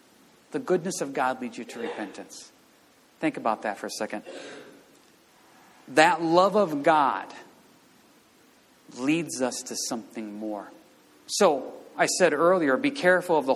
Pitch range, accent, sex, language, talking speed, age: 125-205 Hz, American, male, English, 135 wpm, 40-59